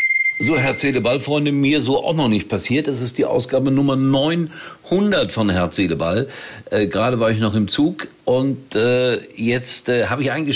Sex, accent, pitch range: male, German, 105-145 Hz